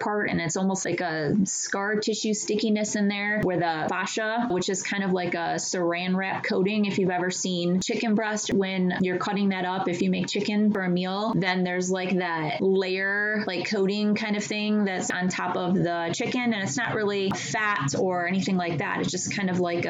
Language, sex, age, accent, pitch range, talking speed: English, female, 20-39, American, 170-195 Hz, 215 wpm